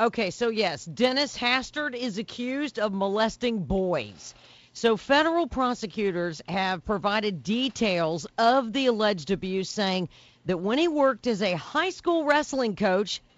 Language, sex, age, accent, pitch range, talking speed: English, female, 50-69, American, 185-250 Hz, 140 wpm